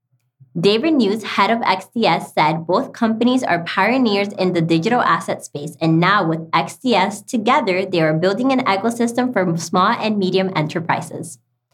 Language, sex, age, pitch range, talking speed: English, female, 20-39, 175-240 Hz, 155 wpm